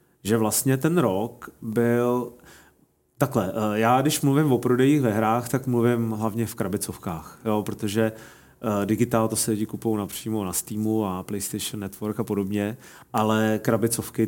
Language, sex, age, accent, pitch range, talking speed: Czech, male, 30-49, native, 105-120 Hz, 145 wpm